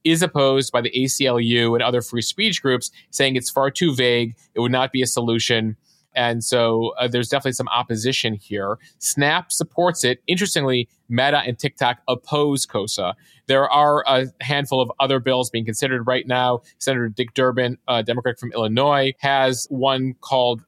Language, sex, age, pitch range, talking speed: English, male, 30-49, 120-140 Hz, 170 wpm